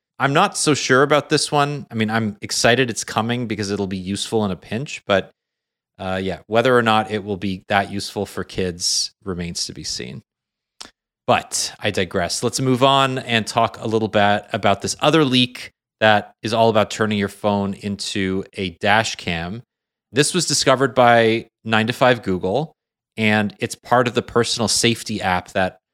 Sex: male